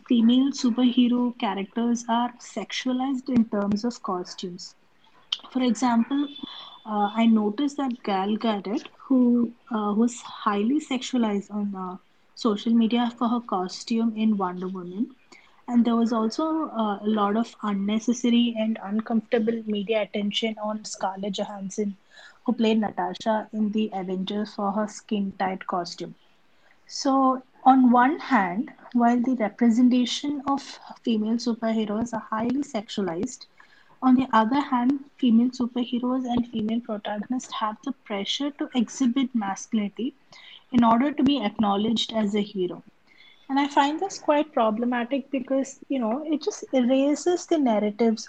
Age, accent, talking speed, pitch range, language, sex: 30-49, Indian, 135 wpm, 210-265 Hz, English, female